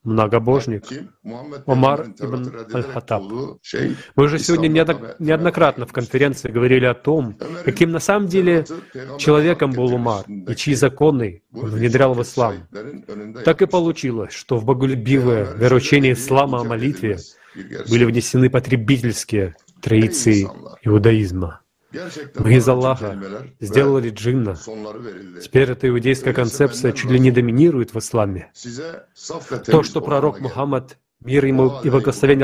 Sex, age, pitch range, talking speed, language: male, 30-49, 115-140 Hz, 120 wpm, Russian